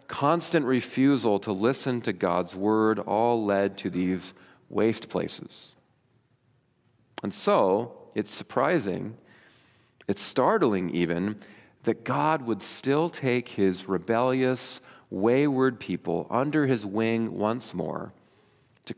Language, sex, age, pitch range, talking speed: English, male, 40-59, 105-130 Hz, 110 wpm